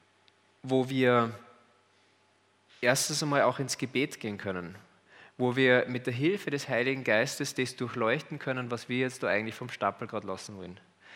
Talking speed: 160 wpm